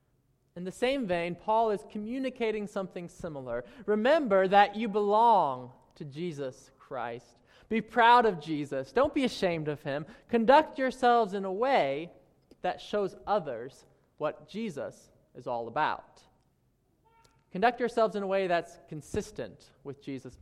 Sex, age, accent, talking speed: male, 20-39, American, 140 wpm